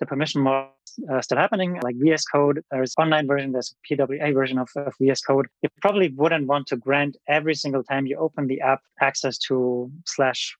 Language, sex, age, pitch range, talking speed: English, male, 30-49, 135-155 Hz, 205 wpm